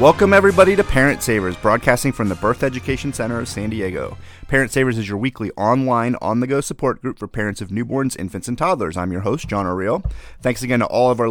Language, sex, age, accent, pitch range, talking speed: English, male, 30-49, American, 95-120 Hz, 220 wpm